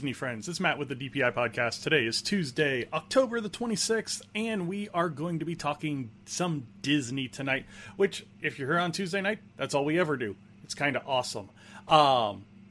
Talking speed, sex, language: 200 wpm, male, English